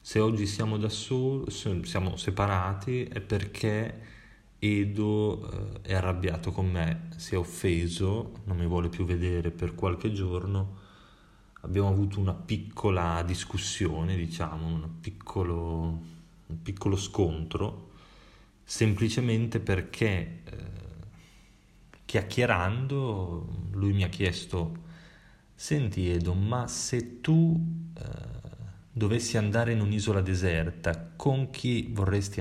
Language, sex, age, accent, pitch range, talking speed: Italian, male, 20-39, native, 85-110 Hz, 110 wpm